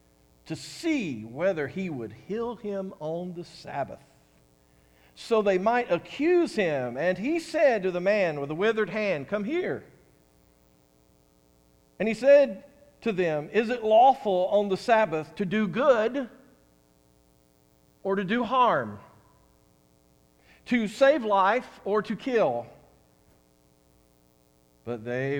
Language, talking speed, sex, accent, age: English, 125 wpm, male, American, 50-69